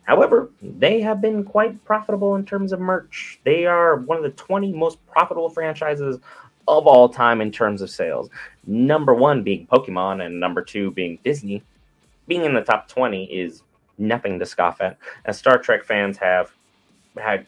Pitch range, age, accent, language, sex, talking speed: 95-155 Hz, 30-49, American, English, male, 175 wpm